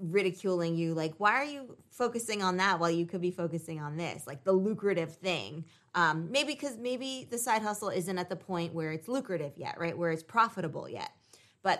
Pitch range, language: 165-200 Hz, English